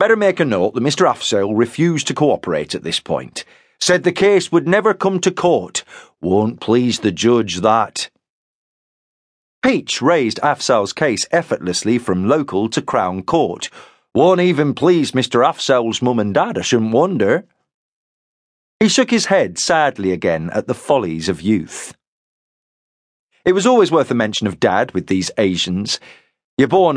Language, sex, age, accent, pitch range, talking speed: English, male, 40-59, British, 100-170 Hz, 160 wpm